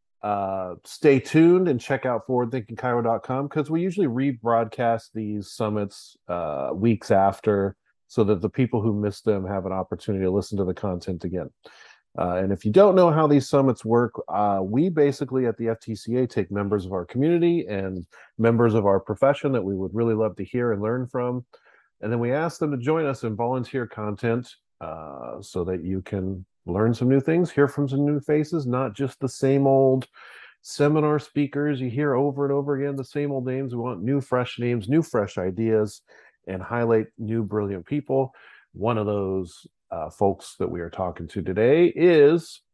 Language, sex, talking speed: English, male, 190 wpm